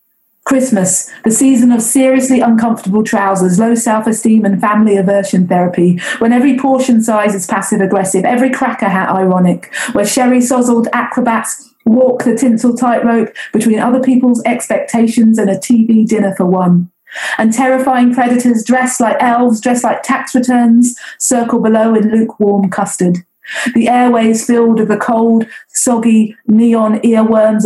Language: English